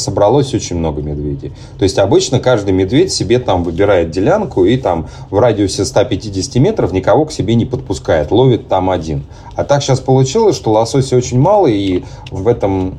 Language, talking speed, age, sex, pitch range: Russian, 175 wpm, 30-49, male, 95-125 Hz